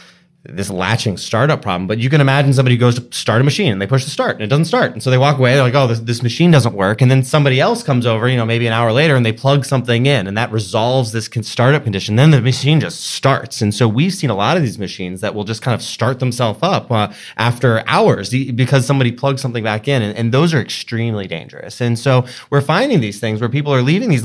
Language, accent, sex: English, American, male